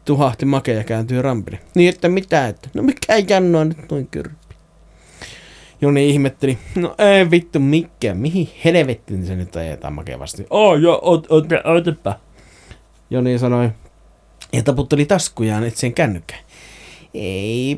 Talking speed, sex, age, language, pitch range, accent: 145 wpm, male, 30-49, Finnish, 100-155 Hz, native